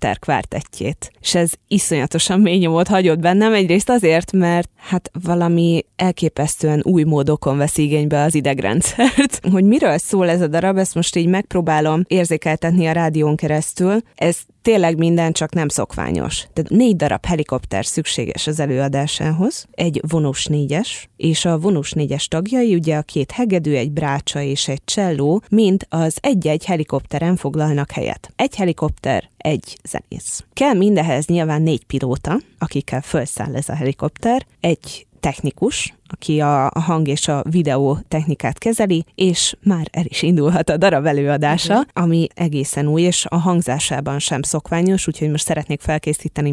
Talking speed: 150 wpm